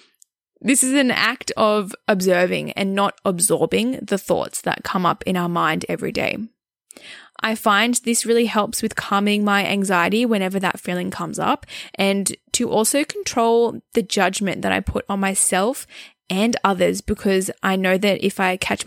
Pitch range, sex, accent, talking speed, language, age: 190-230 Hz, female, Australian, 170 wpm, English, 10-29